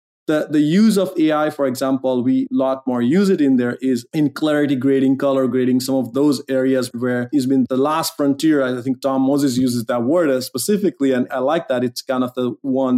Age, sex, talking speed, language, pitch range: 30-49, male, 220 wpm, English, 130-160 Hz